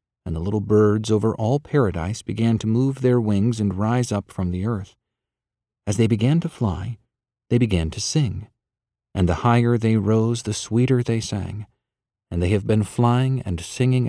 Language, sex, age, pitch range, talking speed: English, male, 50-69, 95-120 Hz, 185 wpm